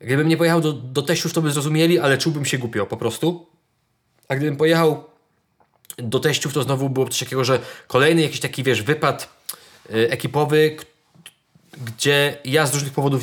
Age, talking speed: 20-39, 170 wpm